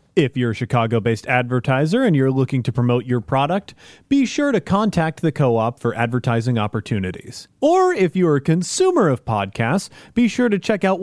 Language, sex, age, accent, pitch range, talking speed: English, male, 30-49, American, 125-185 Hz, 180 wpm